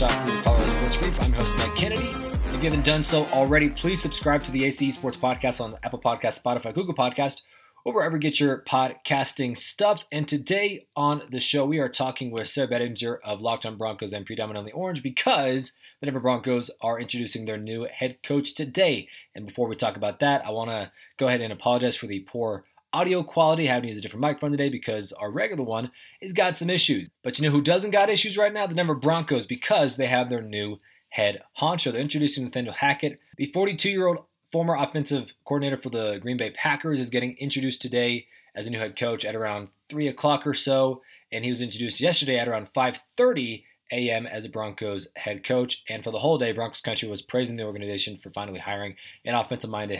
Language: English